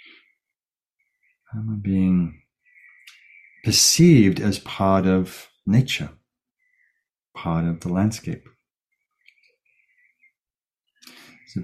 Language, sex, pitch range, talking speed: English, male, 85-100 Hz, 60 wpm